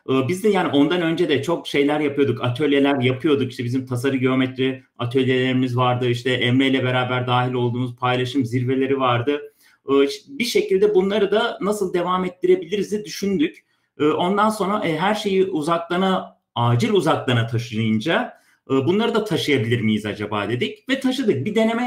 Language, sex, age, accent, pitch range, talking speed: Turkish, male, 40-59, native, 130-190 Hz, 145 wpm